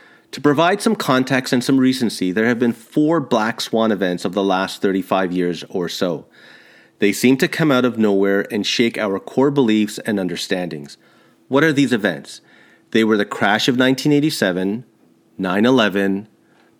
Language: English